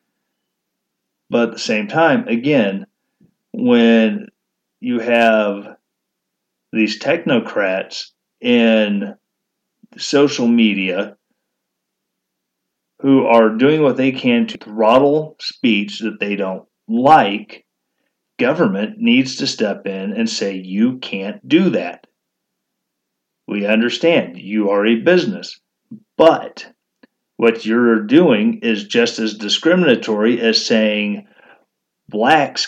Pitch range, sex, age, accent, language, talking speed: 110-155 Hz, male, 40-59, American, English, 100 wpm